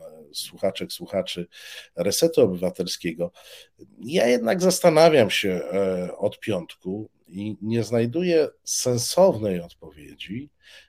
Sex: male